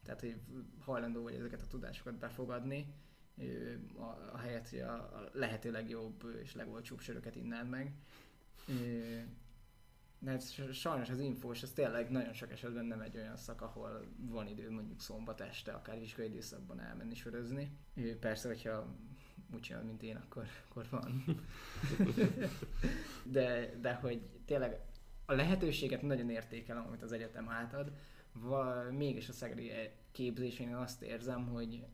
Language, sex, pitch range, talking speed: Hungarian, male, 115-125 Hz, 135 wpm